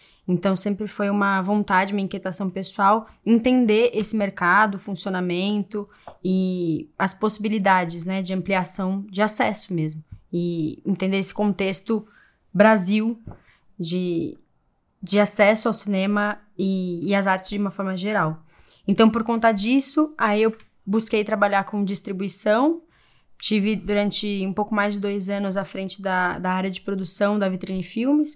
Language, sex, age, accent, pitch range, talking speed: Portuguese, female, 20-39, Brazilian, 190-225 Hz, 145 wpm